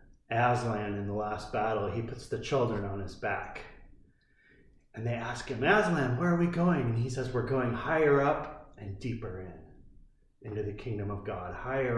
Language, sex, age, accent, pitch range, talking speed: English, male, 30-49, American, 100-140 Hz, 185 wpm